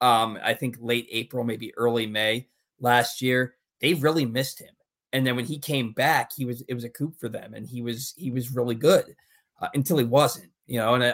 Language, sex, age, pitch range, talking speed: English, male, 20-39, 120-140 Hz, 225 wpm